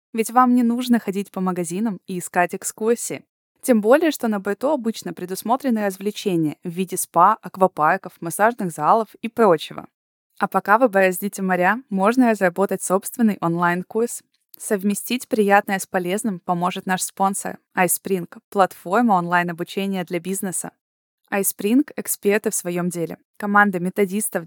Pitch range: 185-225 Hz